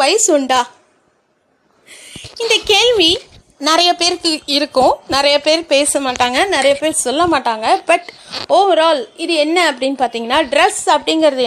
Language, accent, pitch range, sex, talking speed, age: Tamil, native, 260-345 Hz, female, 120 wpm, 30-49